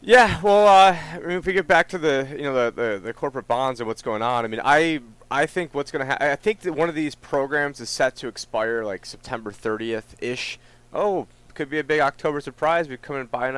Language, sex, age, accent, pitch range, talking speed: English, male, 30-49, American, 110-145 Hz, 250 wpm